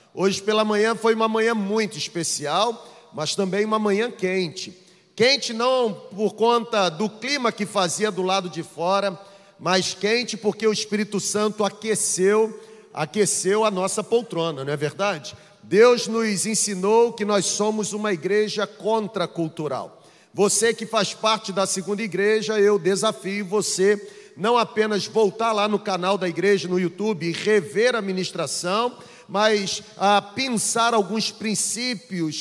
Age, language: 40-59, Portuguese